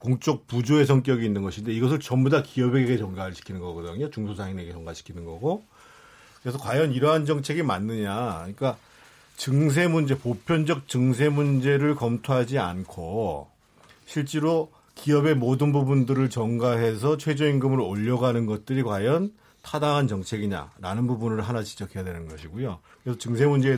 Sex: male